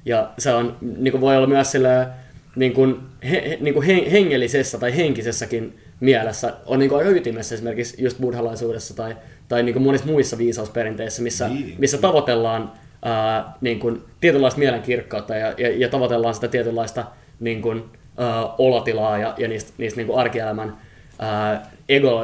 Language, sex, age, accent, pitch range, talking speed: Finnish, male, 20-39, native, 115-135 Hz, 145 wpm